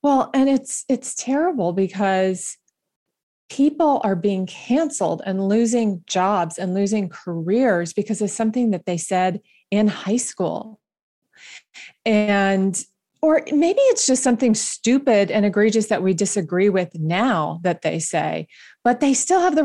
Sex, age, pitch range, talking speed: female, 30-49, 180-225 Hz, 145 wpm